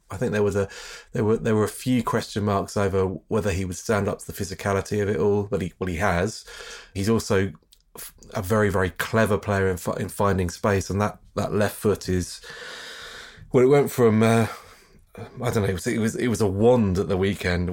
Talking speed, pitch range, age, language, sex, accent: 225 wpm, 95-115 Hz, 30-49, English, male, British